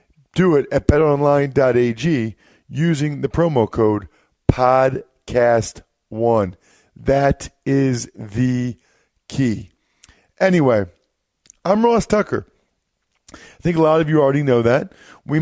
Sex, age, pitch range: male, 40-59, 120-160 Hz